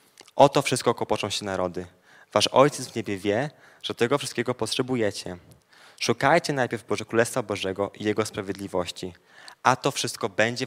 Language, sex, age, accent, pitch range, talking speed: Polish, male, 20-39, native, 105-130 Hz, 150 wpm